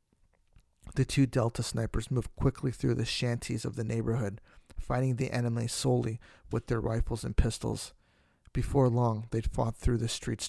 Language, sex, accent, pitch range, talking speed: English, male, American, 110-125 Hz, 160 wpm